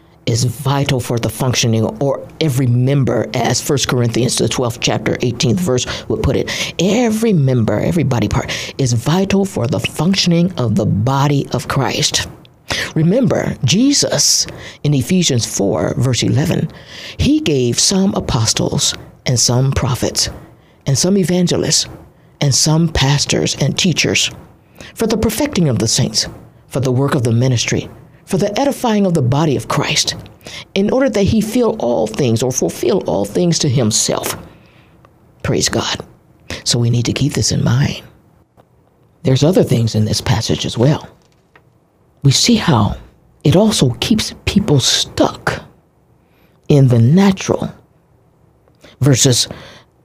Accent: American